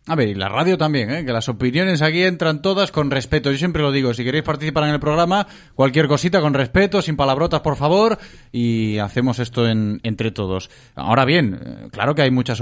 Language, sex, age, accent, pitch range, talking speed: Spanish, male, 30-49, Spanish, 125-165 Hz, 215 wpm